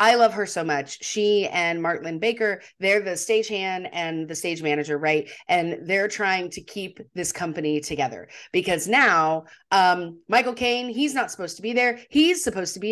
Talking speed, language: 190 wpm, English